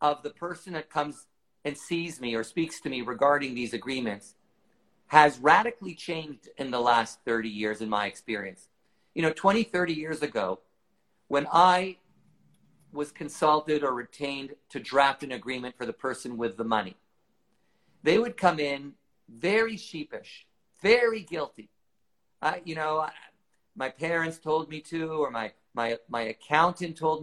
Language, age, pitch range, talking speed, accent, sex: English, 50-69, 125-170 Hz, 155 wpm, American, male